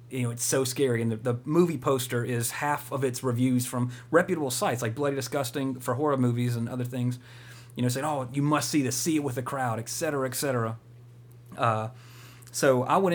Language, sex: English, male